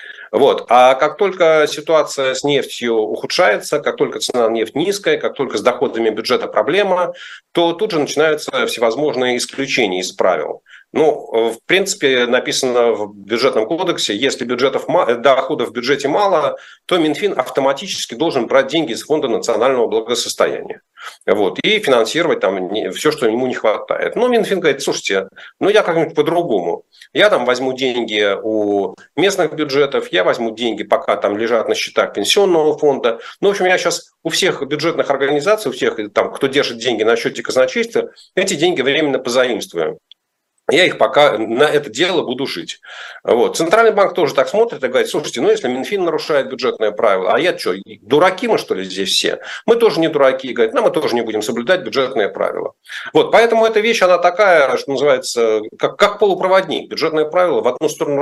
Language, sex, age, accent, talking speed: Russian, male, 40-59, native, 170 wpm